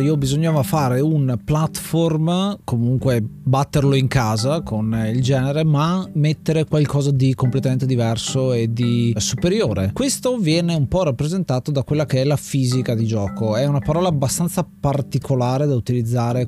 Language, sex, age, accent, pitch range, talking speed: Italian, male, 20-39, native, 125-155 Hz, 150 wpm